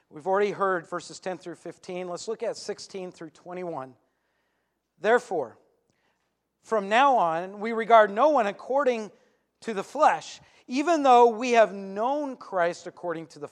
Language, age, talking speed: English, 40-59, 150 wpm